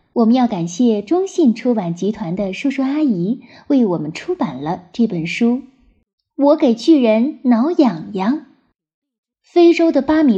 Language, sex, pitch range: Chinese, female, 205-310 Hz